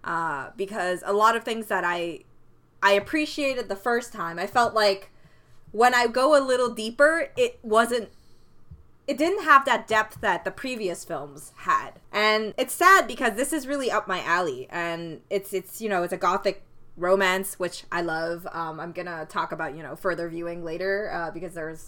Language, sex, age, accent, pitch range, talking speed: English, female, 20-39, American, 180-255 Hz, 190 wpm